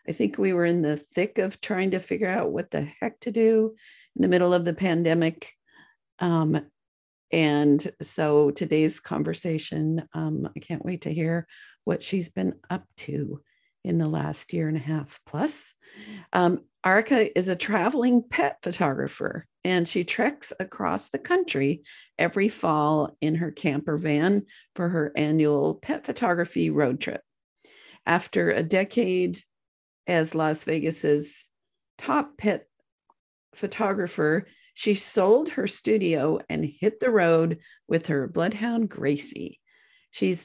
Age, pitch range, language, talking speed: 50-69, 155-200 Hz, English, 140 wpm